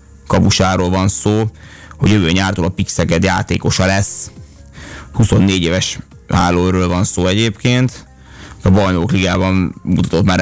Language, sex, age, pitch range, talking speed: Hungarian, male, 20-39, 90-100 Hz, 120 wpm